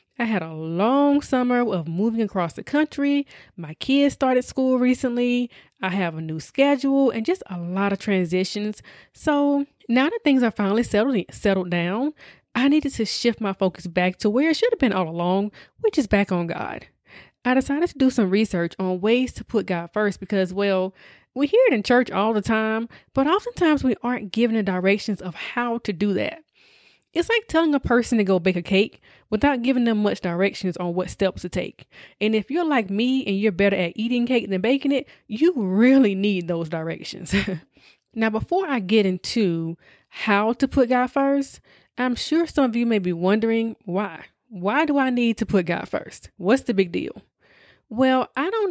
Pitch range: 190-260 Hz